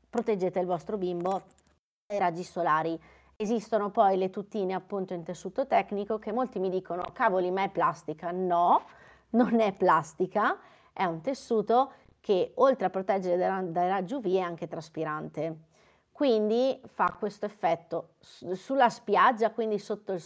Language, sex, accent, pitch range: Italian, female, native, 175-220 Hz